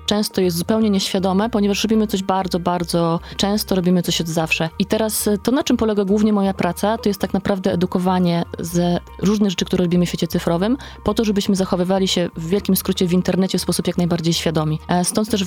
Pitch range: 175-205 Hz